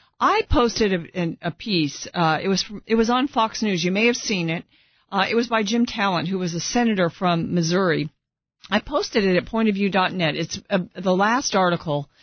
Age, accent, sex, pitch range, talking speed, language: 50-69, American, female, 170-205 Hz, 195 wpm, English